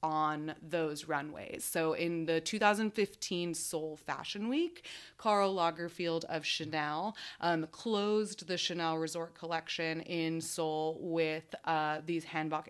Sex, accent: female, American